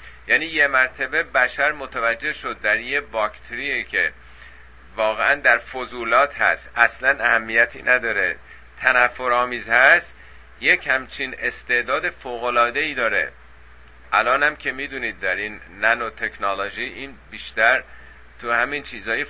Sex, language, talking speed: male, Persian, 110 wpm